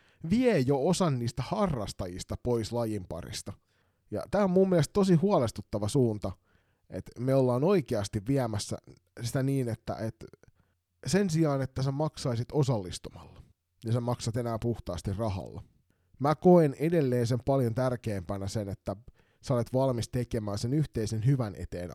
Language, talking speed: Finnish, 140 wpm